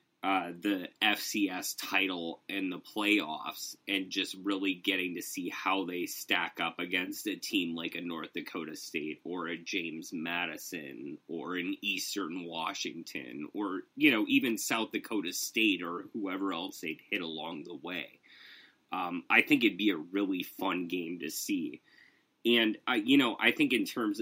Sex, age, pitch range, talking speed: male, 30-49, 235-310 Hz, 170 wpm